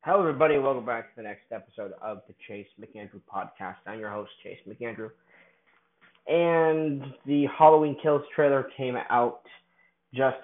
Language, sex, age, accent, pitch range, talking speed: English, male, 20-39, American, 105-135 Hz, 150 wpm